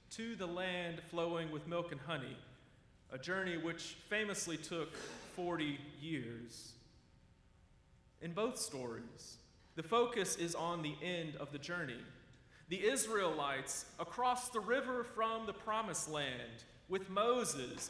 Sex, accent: male, American